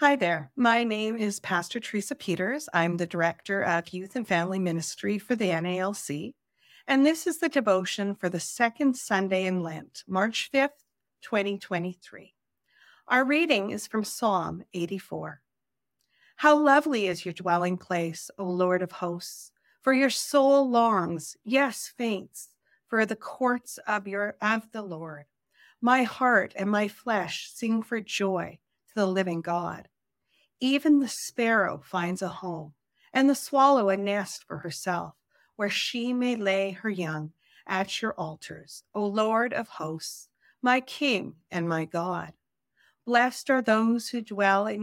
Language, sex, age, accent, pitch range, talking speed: English, female, 40-59, American, 180-240 Hz, 150 wpm